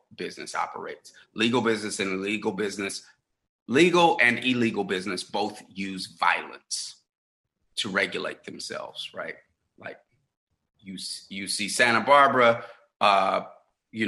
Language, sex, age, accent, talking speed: English, male, 30-49, American, 110 wpm